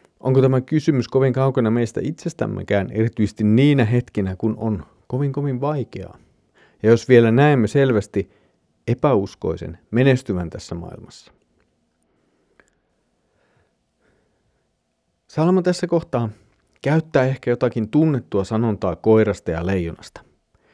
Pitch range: 100-135 Hz